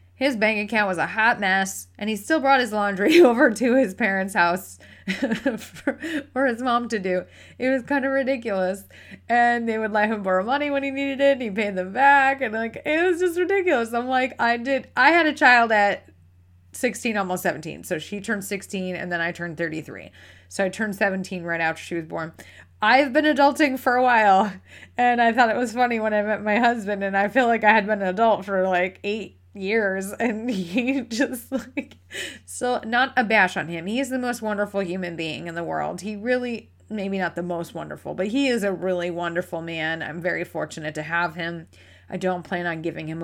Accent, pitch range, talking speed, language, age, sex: American, 180-245 Hz, 220 wpm, English, 20-39, female